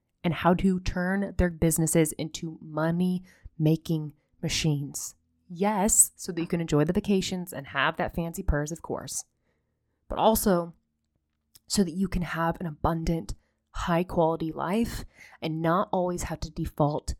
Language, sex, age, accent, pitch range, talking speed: English, female, 20-39, American, 150-190 Hz, 145 wpm